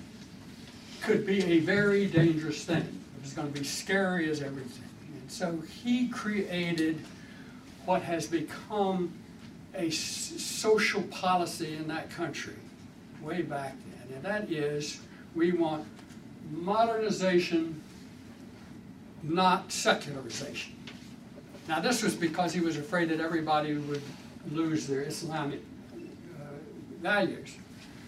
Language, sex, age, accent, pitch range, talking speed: English, male, 60-79, American, 155-205 Hz, 115 wpm